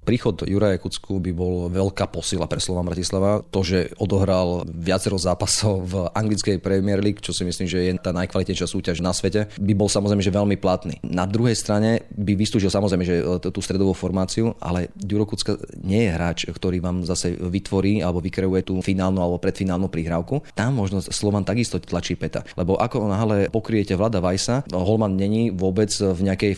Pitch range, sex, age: 95-105 Hz, male, 30-49